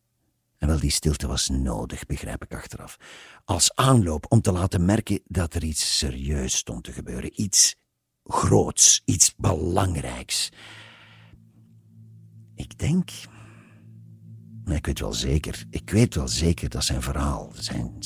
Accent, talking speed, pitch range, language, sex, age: Dutch, 135 wpm, 80-110 Hz, Dutch, male, 50-69